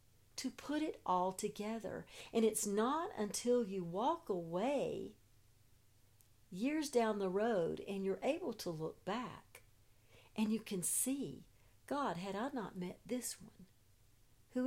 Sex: female